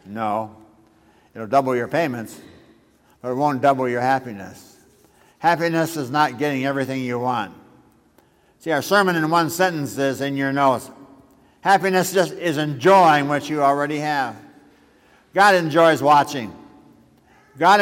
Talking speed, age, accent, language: 135 wpm, 60-79, American, English